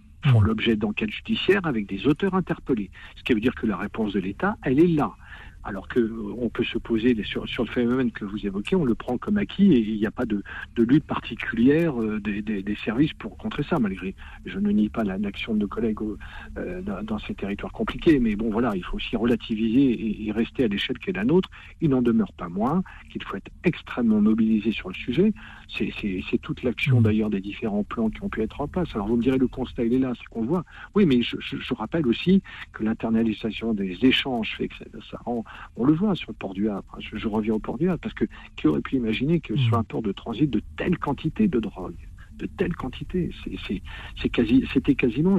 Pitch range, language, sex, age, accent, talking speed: 105-175 Hz, French, male, 50-69, French, 240 wpm